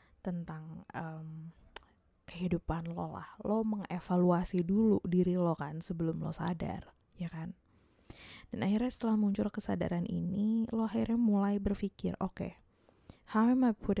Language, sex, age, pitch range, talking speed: Indonesian, female, 20-39, 160-205 Hz, 135 wpm